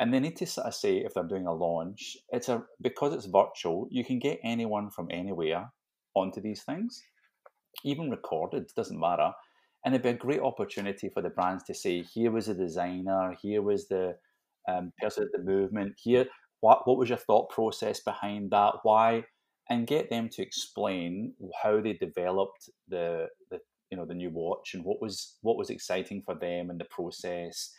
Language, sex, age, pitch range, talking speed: English, male, 30-49, 90-120 Hz, 195 wpm